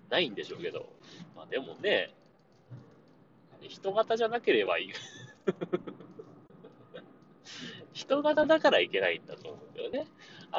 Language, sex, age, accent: Japanese, male, 30-49, native